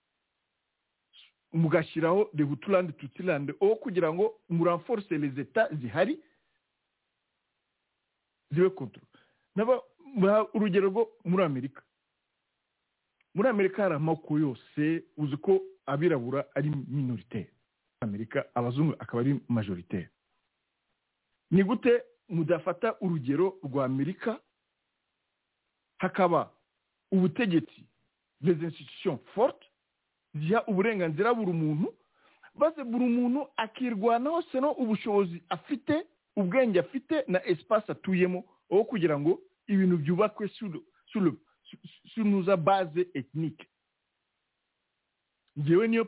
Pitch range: 150-210 Hz